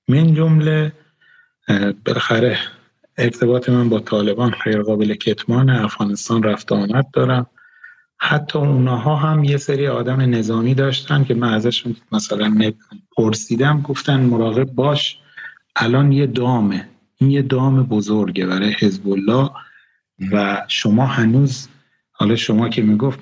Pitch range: 105-135 Hz